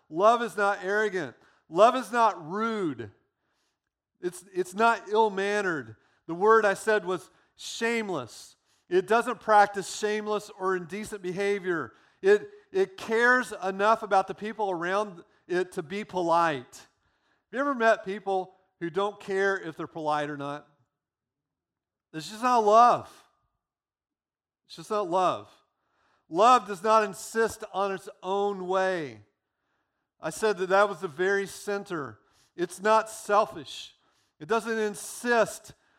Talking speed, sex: 135 wpm, male